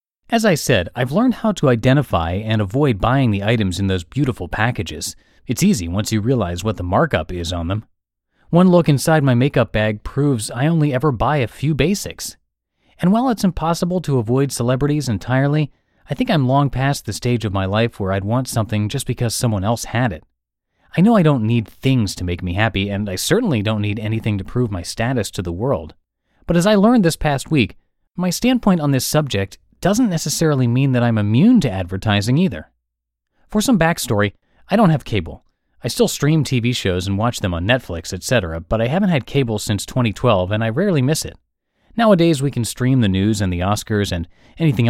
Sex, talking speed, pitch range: male, 210 wpm, 100-150 Hz